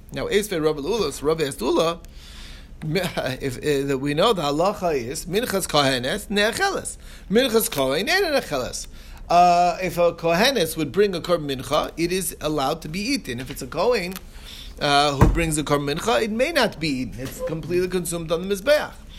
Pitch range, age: 155-210 Hz, 30-49